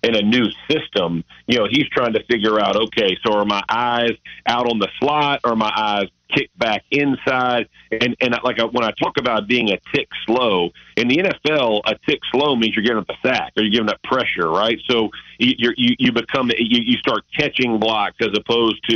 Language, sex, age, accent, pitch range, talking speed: English, male, 40-59, American, 110-125 Hz, 210 wpm